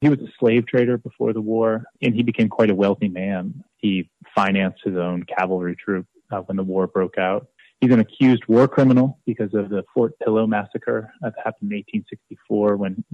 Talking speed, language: 195 wpm, English